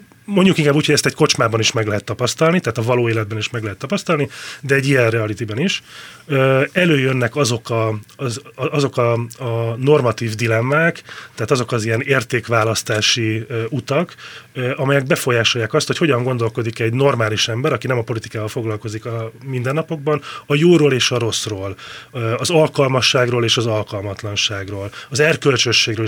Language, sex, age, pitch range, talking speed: Hungarian, male, 30-49, 115-140 Hz, 155 wpm